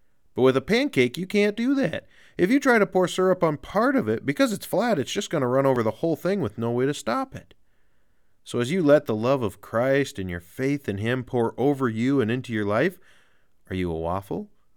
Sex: male